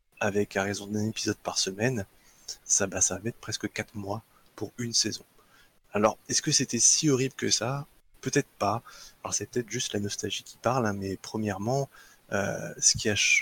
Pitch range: 100-120 Hz